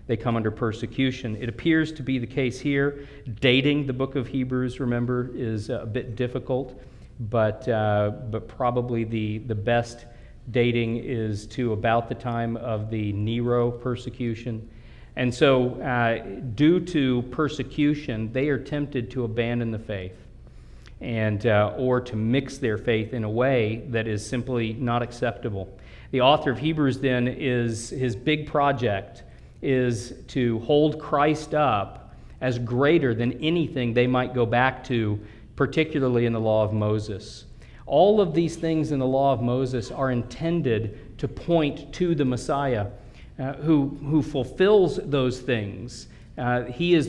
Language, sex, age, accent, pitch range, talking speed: English, male, 40-59, American, 115-140 Hz, 155 wpm